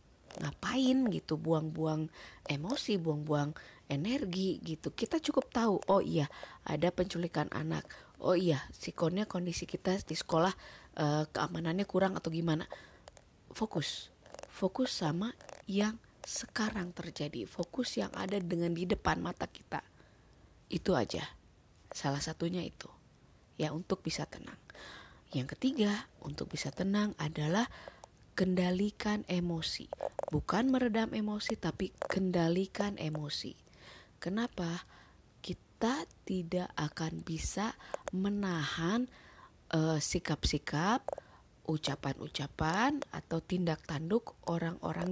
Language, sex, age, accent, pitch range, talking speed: Indonesian, female, 30-49, native, 155-210 Hz, 100 wpm